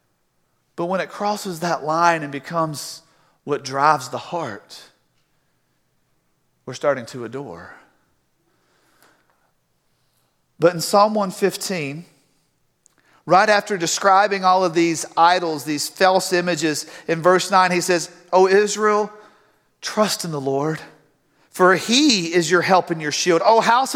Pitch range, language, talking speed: 160-270 Hz, English, 130 wpm